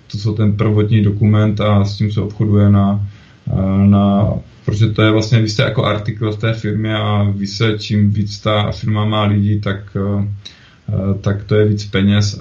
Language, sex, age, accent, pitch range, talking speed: Czech, male, 20-39, native, 105-110 Hz, 175 wpm